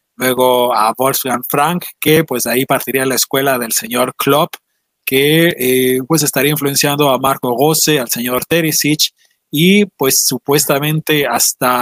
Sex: male